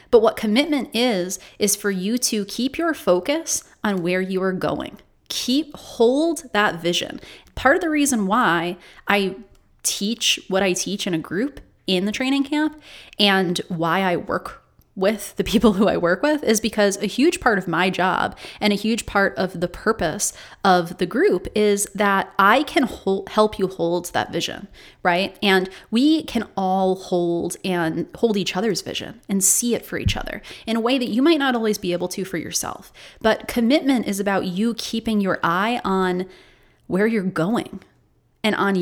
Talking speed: 185 wpm